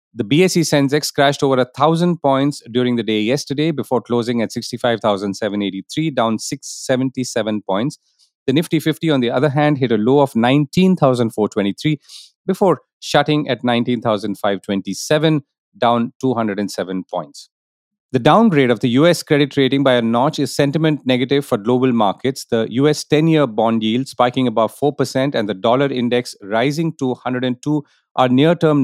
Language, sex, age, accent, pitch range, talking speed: English, male, 40-59, Indian, 115-150 Hz, 145 wpm